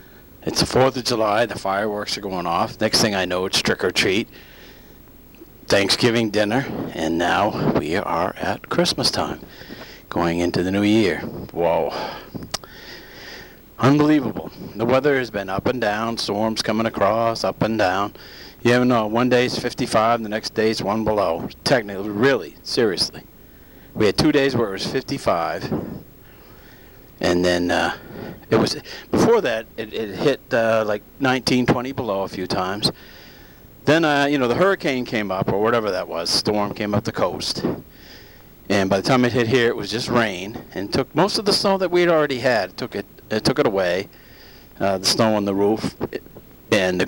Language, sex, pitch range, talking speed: English, male, 105-130 Hz, 180 wpm